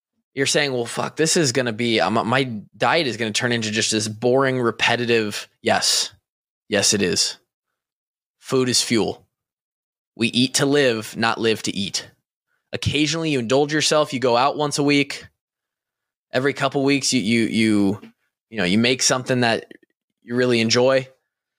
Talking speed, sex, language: 165 wpm, male, English